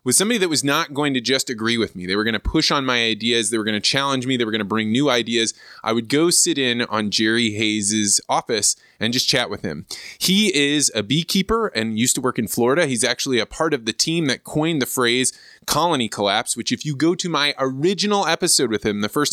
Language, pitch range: English, 120-155 Hz